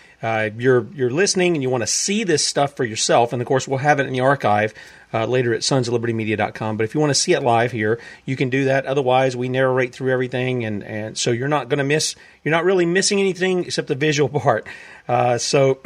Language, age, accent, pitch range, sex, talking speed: English, 40-59, American, 125-155 Hz, male, 250 wpm